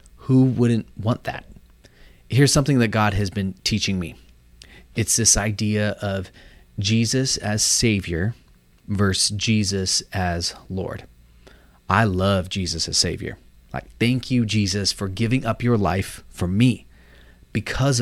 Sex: male